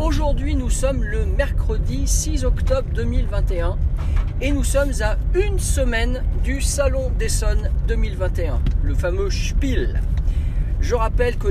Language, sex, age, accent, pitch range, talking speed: French, male, 40-59, French, 75-85 Hz, 125 wpm